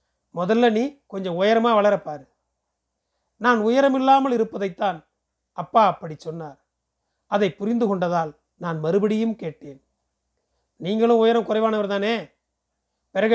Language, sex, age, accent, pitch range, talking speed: Tamil, male, 40-59, native, 160-225 Hz, 100 wpm